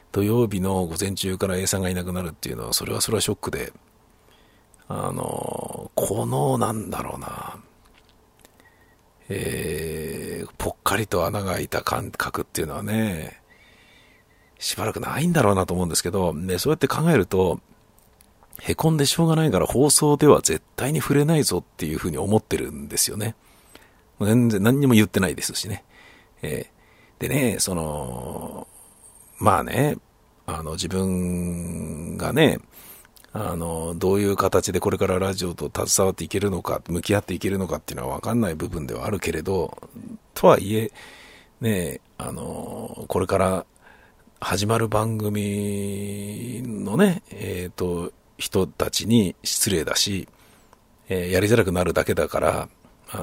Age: 50-69